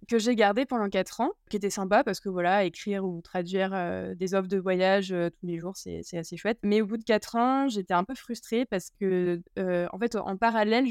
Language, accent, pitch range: French, French, 185-220 Hz